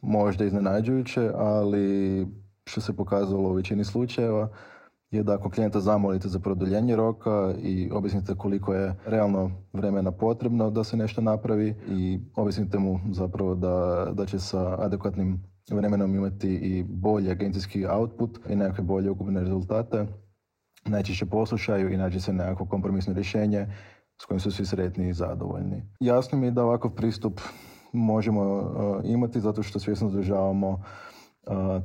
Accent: native